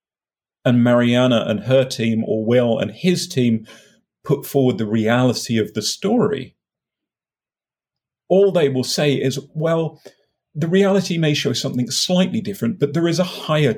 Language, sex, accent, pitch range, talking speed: English, male, British, 115-155 Hz, 150 wpm